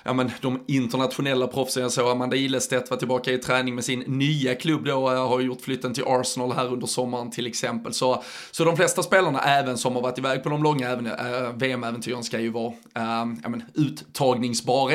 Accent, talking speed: native, 205 wpm